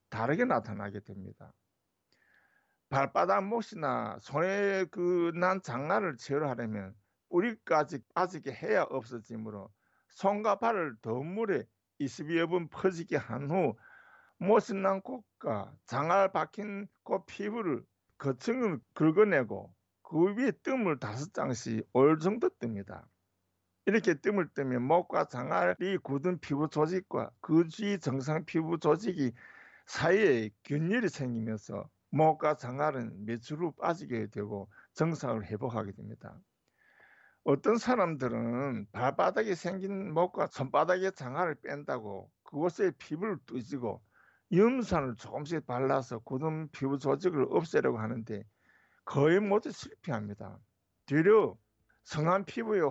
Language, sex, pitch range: Korean, male, 115-185 Hz